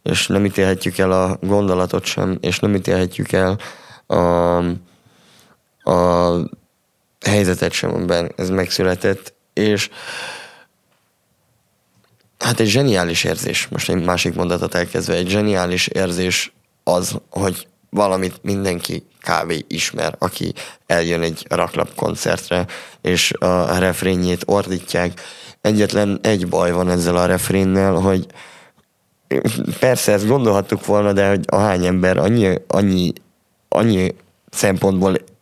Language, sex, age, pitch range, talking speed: Hungarian, male, 20-39, 90-105 Hz, 110 wpm